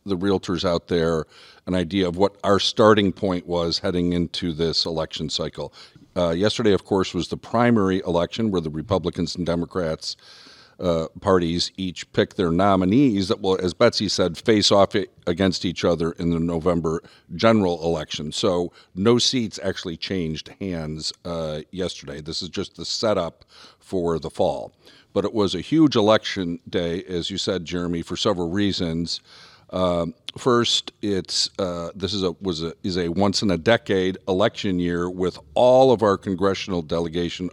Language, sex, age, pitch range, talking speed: English, male, 50-69, 85-100 Hz, 165 wpm